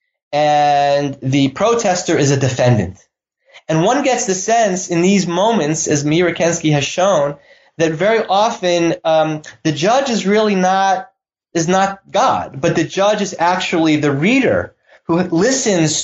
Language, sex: English, male